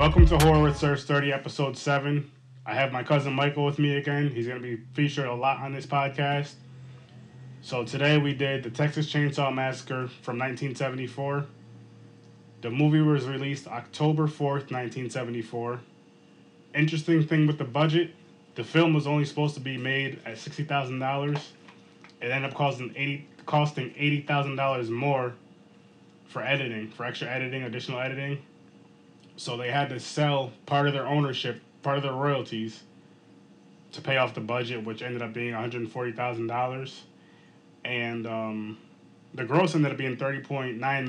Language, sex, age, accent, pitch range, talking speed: English, male, 20-39, American, 120-145 Hz, 150 wpm